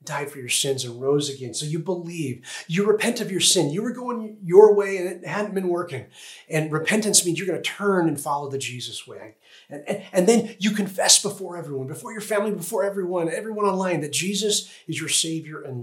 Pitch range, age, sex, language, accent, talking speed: 140-185 Hz, 30-49, male, English, American, 220 wpm